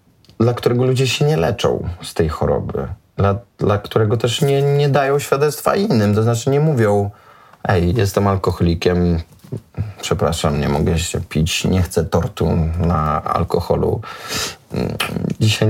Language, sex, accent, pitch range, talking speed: Polish, male, native, 95-130 Hz, 140 wpm